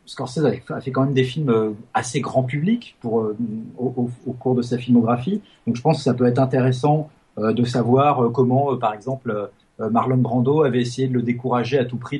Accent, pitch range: French, 115-140 Hz